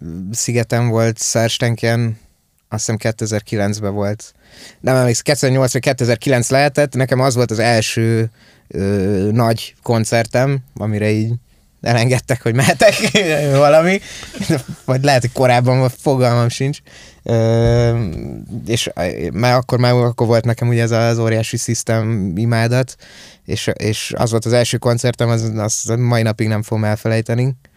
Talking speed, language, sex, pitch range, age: 130 wpm, Hungarian, male, 115-130 Hz, 20-39